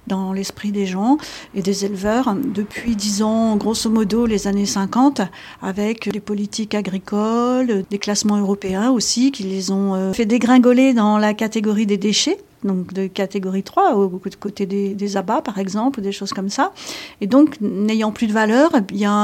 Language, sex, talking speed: French, female, 175 wpm